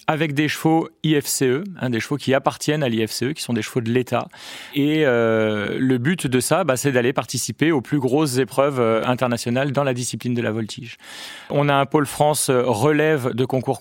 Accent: French